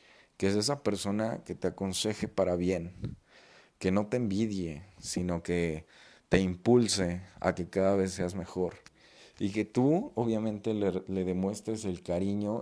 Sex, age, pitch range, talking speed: male, 40-59, 90-105 Hz, 150 wpm